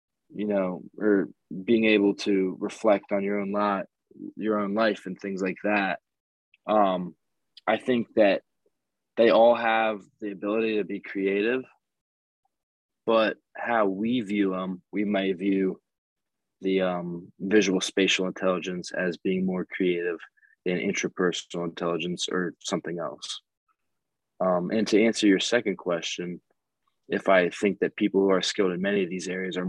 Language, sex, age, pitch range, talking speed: English, male, 20-39, 95-115 Hz, 150 wpm